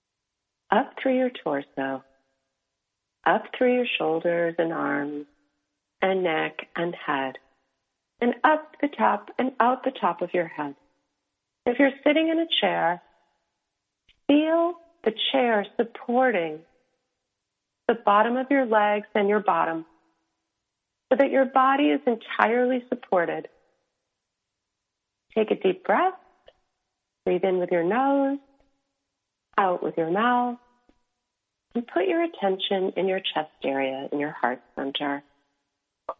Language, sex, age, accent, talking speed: English, female, 40-59, American, 125 wpm